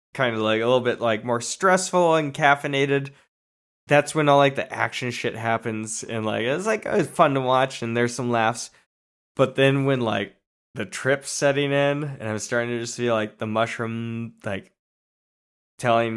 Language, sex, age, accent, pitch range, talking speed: English, male, 10-29, American, 110-125 Hz, 190 wpm